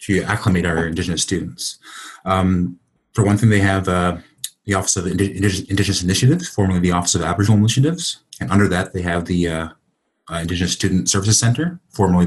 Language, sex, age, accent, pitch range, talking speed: English, male, 30-49, American, 90-110 Hz, 175 wpm